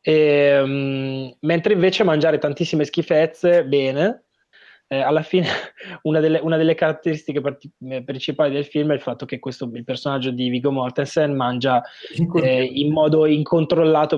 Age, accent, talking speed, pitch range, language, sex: 20-39, native, 150 wpm, 130-155 Hz, Italian, male